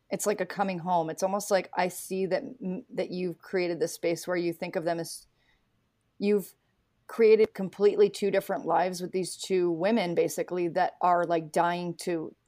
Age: 30-49